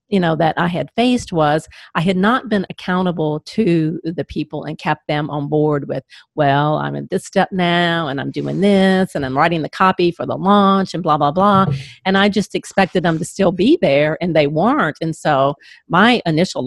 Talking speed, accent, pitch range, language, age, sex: 210 wpm, American, 155-185 Hz, English, 40-59, female